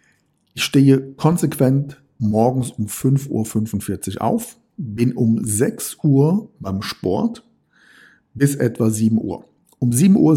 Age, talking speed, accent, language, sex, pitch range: 50-69, 120 wpm, German, German, male, 110-140 Hz